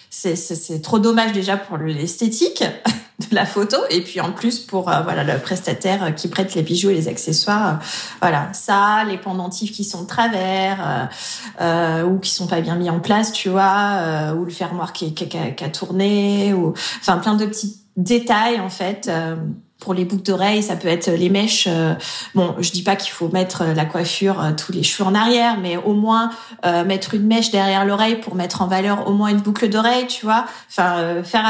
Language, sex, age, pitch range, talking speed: French, female, 30-49, 180-215 Hz, 215 wpm